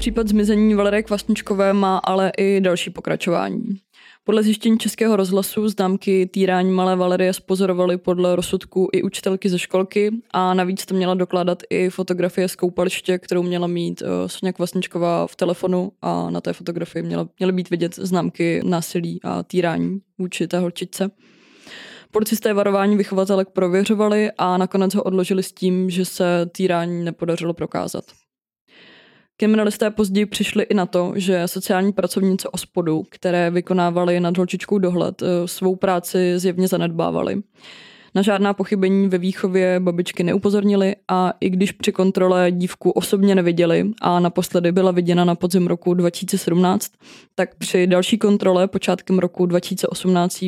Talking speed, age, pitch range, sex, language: 140 wpm, 20-39, 175-195 Hz, female, Czech